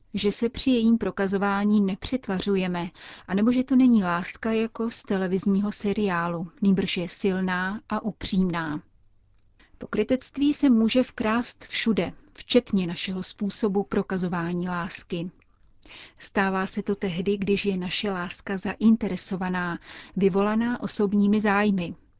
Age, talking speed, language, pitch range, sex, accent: 30-49, 115 wpm, Czech, 185-215 Hz, female, native